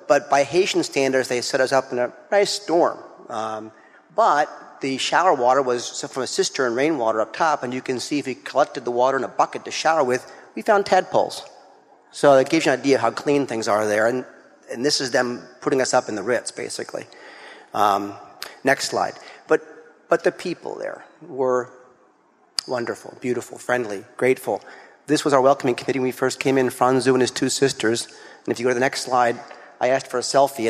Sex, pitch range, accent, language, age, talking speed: male, 120-140 Hz, American, English, 40-59, 210 wpm